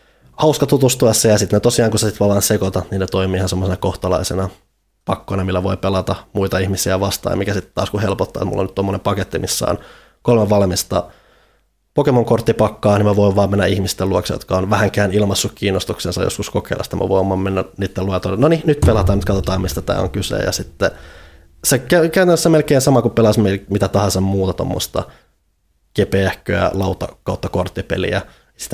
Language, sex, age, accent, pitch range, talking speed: Finnish, male, 20-39, native, 95-110 Hz, 180 wpm